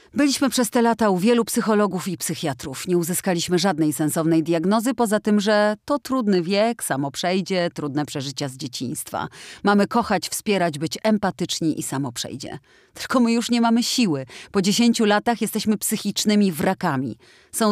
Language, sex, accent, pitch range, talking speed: Polish, female, native, 160-215 Hz, 160 wpm